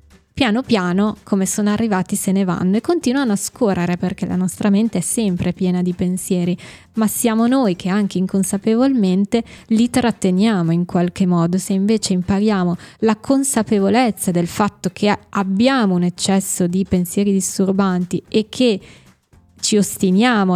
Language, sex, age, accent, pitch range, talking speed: Italian, female, 20-39, native, 185-205 Hz, 145 wpm